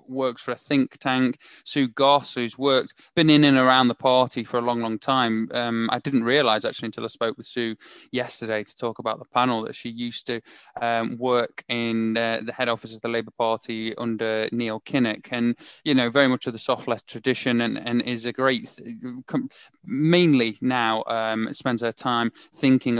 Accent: British